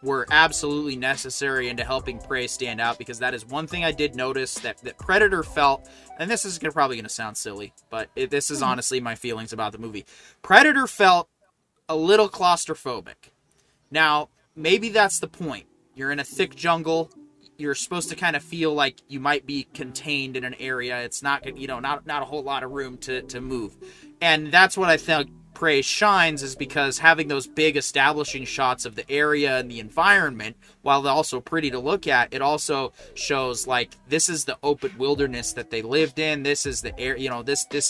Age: 30-49